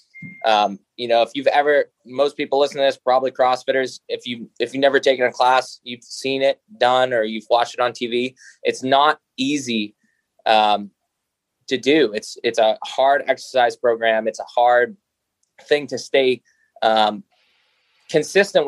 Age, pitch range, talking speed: 20-39, 115-140 Hz, 165 wpm